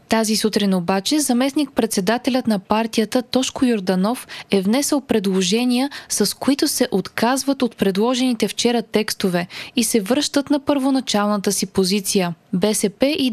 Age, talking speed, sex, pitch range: 20-39, 125 wpm, female, 205-260 Hz